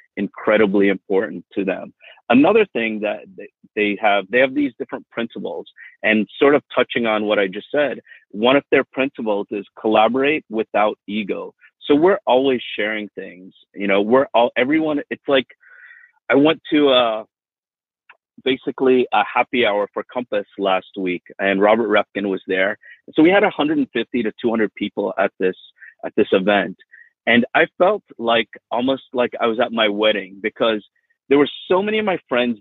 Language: English